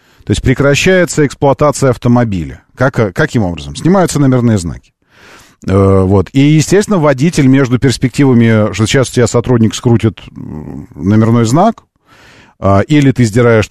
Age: 40-59